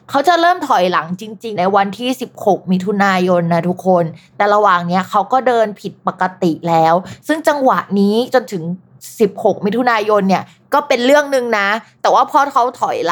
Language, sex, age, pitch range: Thai, female, 20-39, 190-255 Hz